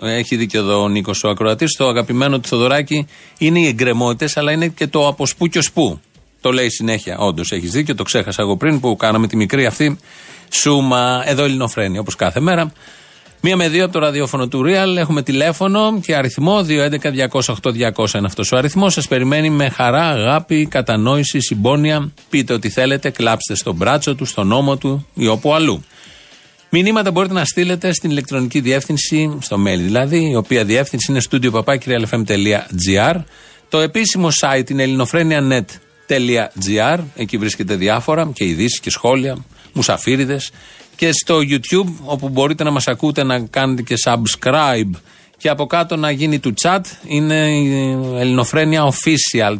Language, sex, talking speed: Greek, male, 160 wpm